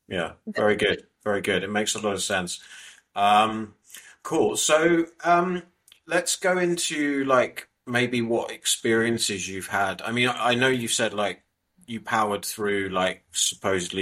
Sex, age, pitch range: male, 30-49, 95-110 Hz